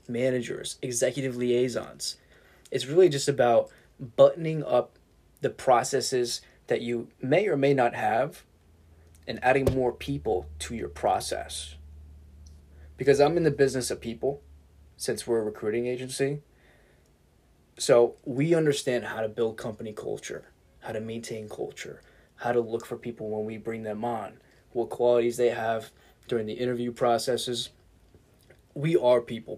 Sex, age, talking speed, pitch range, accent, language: male, 20-39, 140 wpm, 110-140 Hz, American, English